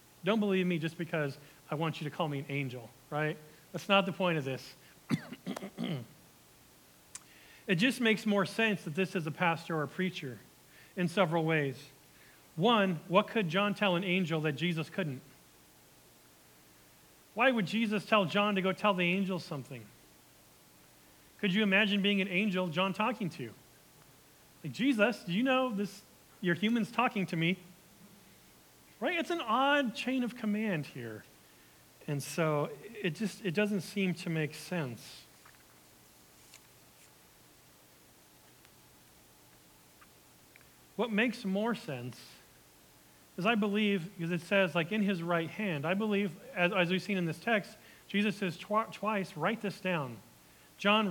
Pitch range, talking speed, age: 150-205 Hz, 150 wpm, 40-59